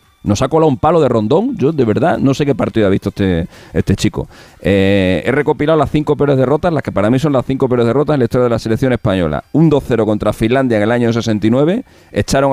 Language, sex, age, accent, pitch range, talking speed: Spanish, male, 40-59, Spanish, 100-130 Hz, 245 wpm